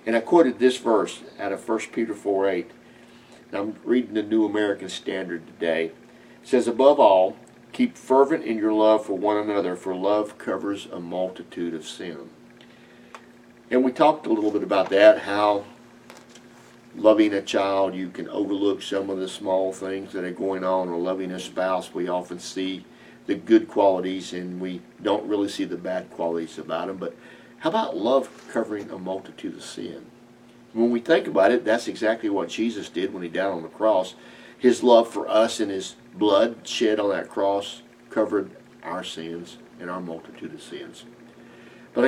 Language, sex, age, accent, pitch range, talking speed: English, male, 50-69, American, 90-120 Hz, 180 wpm